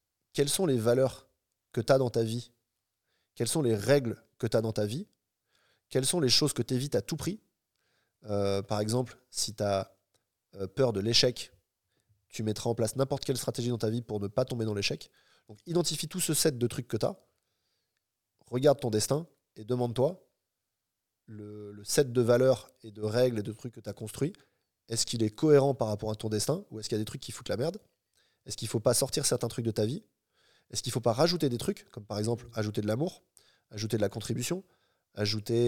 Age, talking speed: 20-39, 225 wpm